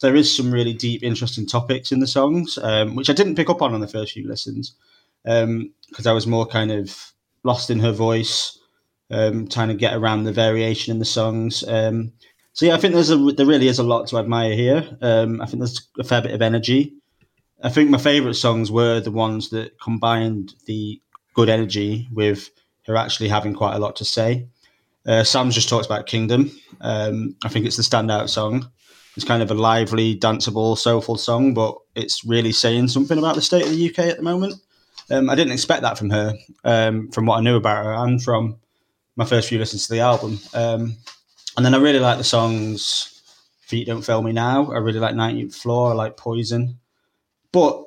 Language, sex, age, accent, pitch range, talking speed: English, male, 20-39, British, 110-125 Hz, 210 wpm